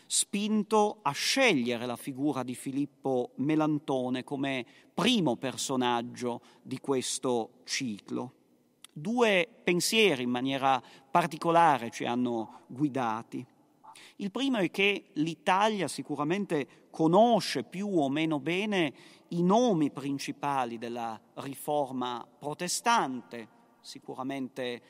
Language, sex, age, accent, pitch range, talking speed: Italian, male, 40-59, native, 130-170 Hz, 95 wpm